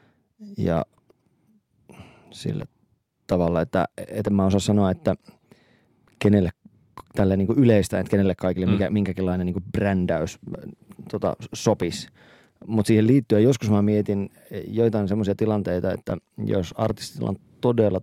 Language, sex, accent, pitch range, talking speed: Finnish, male, native, 90-105 Hz, 125 wpm